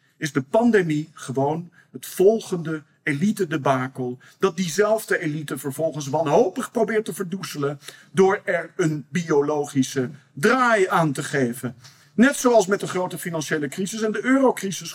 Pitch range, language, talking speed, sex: 150-215 Hz, Dutch, 135 wpm, male